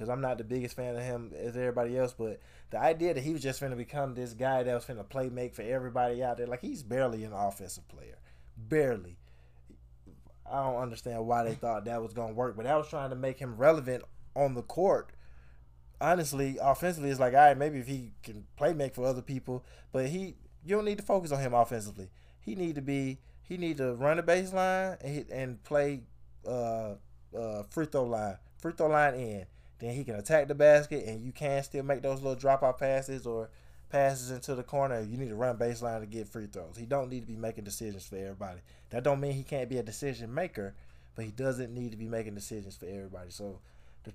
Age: 20-39